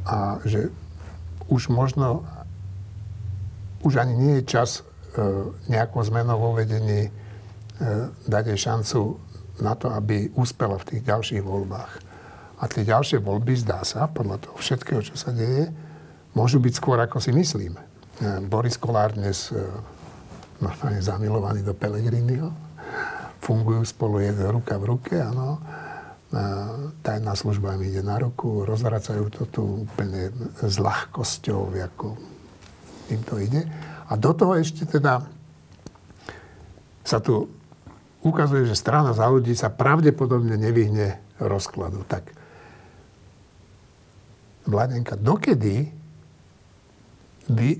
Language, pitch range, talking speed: Slovak, 100-125 Hz, 115 wpm